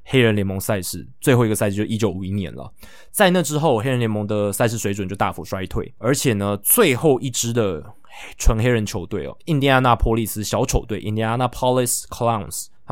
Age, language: 20-39, Chinese